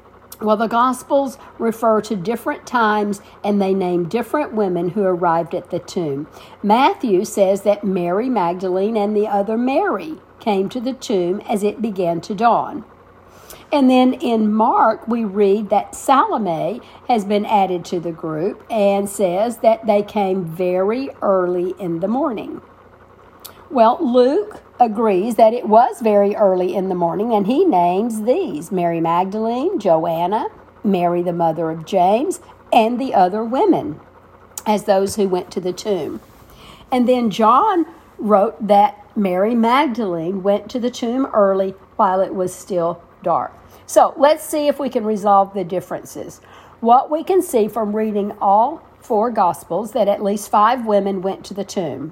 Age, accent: 50-69, American